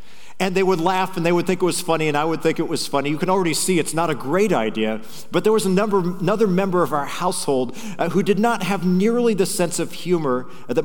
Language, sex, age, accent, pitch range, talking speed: English, male, 50-69, American, 150-205 Hz, 265 wpm